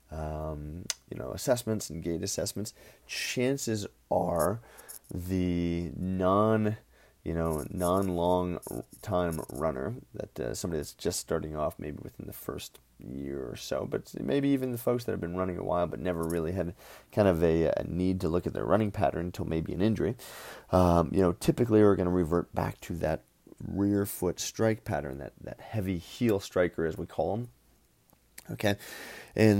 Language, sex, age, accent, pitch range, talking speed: English, male, 30-49, American, 80-100 Hz, 175 wpm